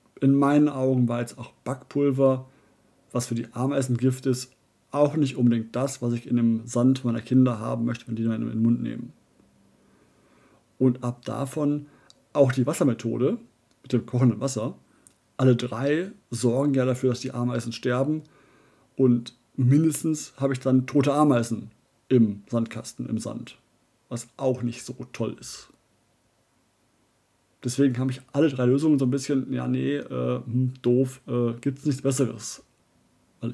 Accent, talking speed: German, 155 wpm